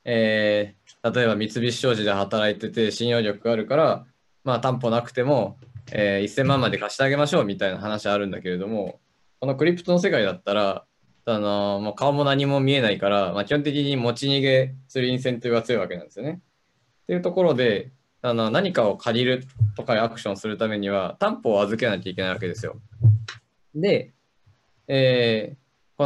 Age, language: 20-39, Japanese